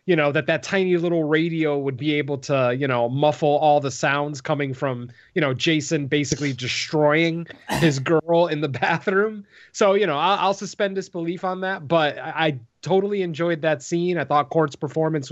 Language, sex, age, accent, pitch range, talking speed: English, male, 30-49, American, 145-185 Hz, 190 wpm